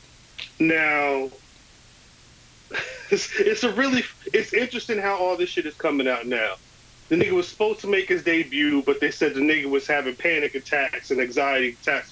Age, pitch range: 30-49, 140-200 Hz